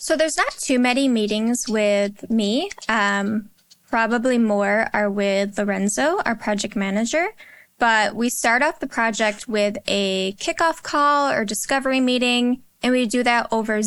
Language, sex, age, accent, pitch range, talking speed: English, female, 10-29, American, 205-245 Hz, 150 wpm